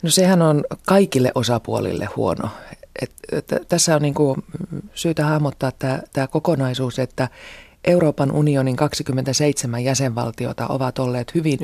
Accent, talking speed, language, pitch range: native, 125 wpm, Finnish, 120-155 Hz